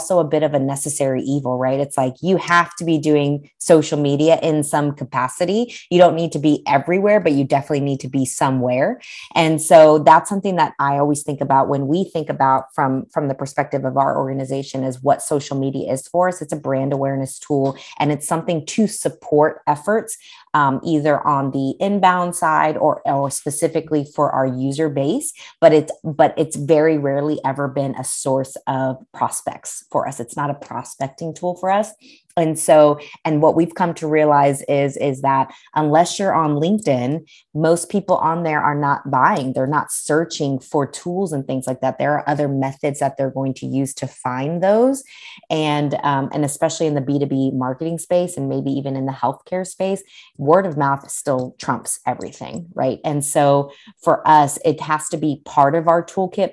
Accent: American